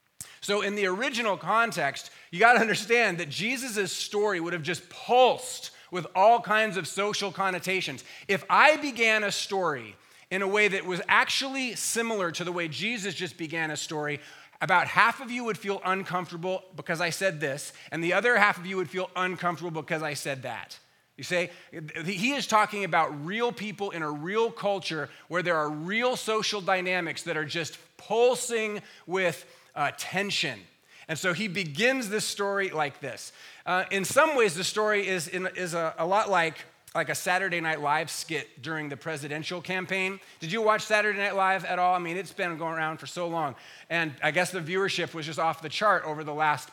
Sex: male